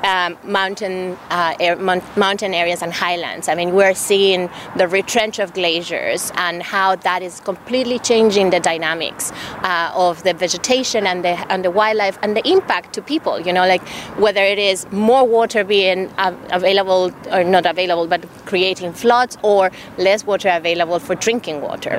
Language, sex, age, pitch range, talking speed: English, female, 30-49, 180-220 Hz, 170 wpm